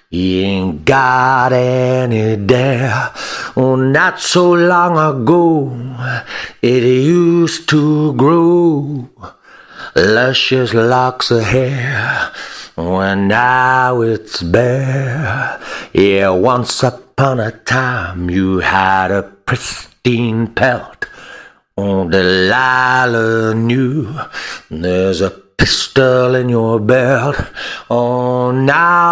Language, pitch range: English, 110-135 Hz